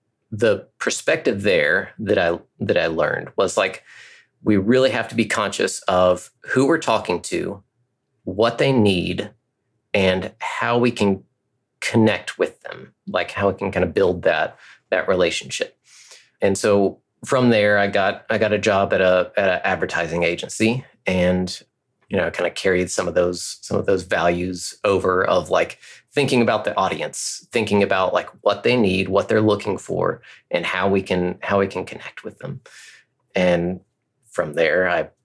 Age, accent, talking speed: 30-49, American, 170 wpm